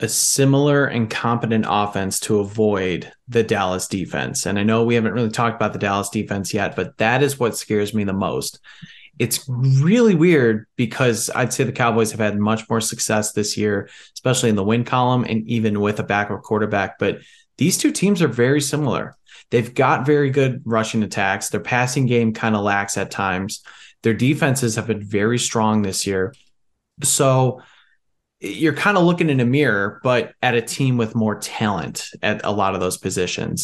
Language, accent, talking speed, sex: English, American, 190 wpm, male